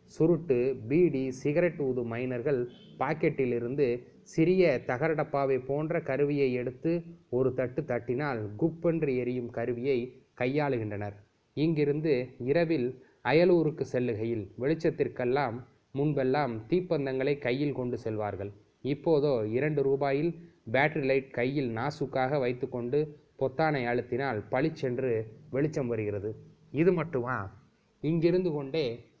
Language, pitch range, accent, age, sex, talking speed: Tamil, 115-145 Hz, native, 20-39, male, 95 wpm